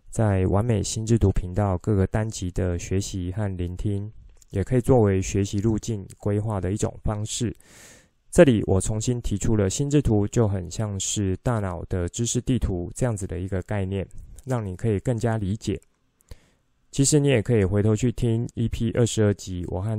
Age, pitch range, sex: 20-39, 95-115 Hz, male